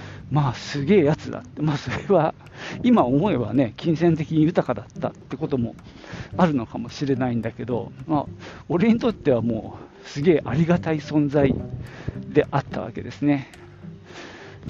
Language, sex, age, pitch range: Japanese, male, 50-69, 125-170 Hz